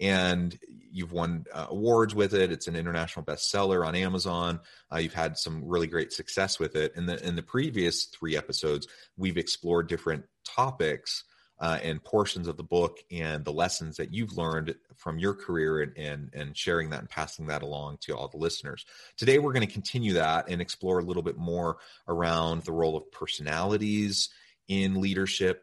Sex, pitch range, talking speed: male, 75-90 Hz, 185 wpm